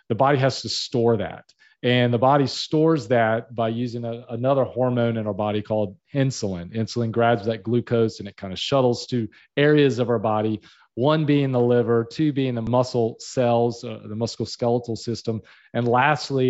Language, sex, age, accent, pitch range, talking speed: English, male, 40-59, American, 115-140 Hz, 180 wpm